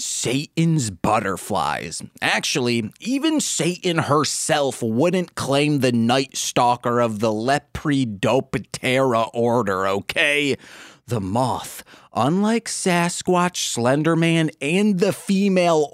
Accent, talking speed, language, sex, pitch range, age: American, 90 wpm, English, male, 120-180 Hz, 30-49